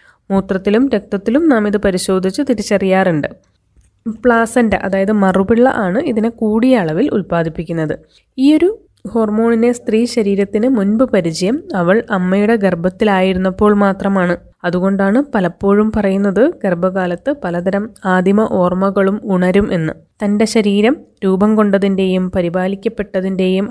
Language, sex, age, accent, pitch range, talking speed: Malayalam, female, 20-39, native, 185-225 Hz, 95 wpm